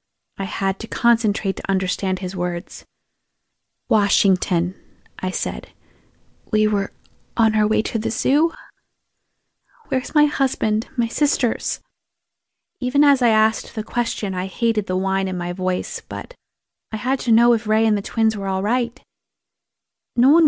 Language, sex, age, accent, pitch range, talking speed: English, female, 20-39, American, 195-240 Hz, 150 wpm